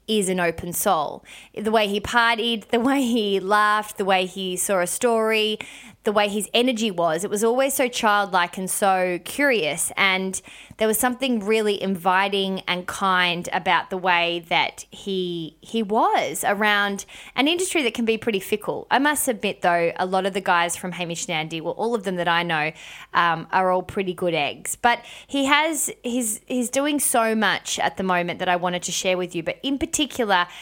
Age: 20-39